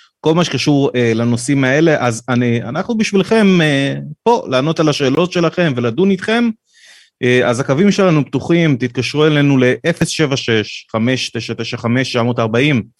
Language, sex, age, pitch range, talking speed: Hebrew, male, 30-49, 115-165 Hz, 125 wpm